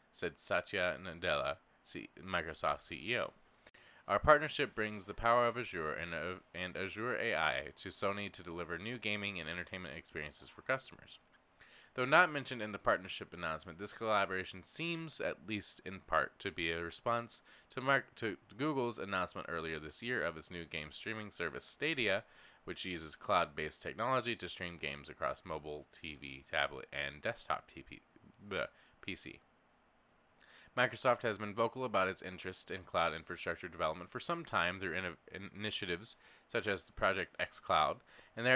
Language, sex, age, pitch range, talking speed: English, male, 20-39, 85-120 Hz, 155 wpm